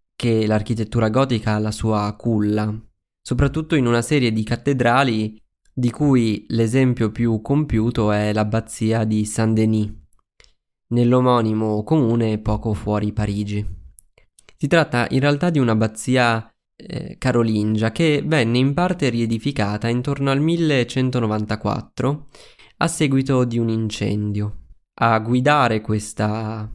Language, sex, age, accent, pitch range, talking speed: Italian, male, 20-39, native, 110-135 Hz, 115 wpm